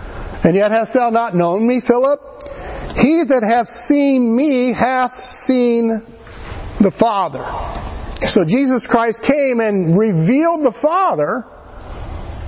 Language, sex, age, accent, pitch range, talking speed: English, male, 60-79, American, 180-240 Hz, 120 wpm